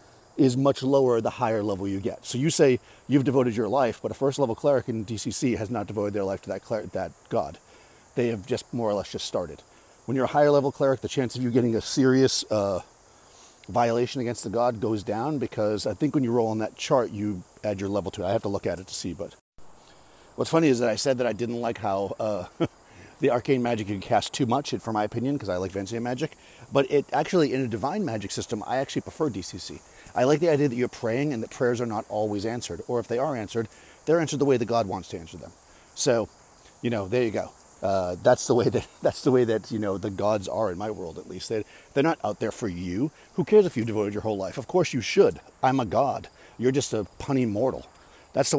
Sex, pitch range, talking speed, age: male, 105-130 Hz, 255 wpm, 40-59